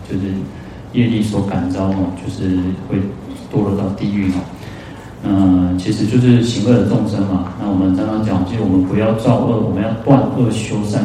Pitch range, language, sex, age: 95-110 Hz, Chinese, male, 30-49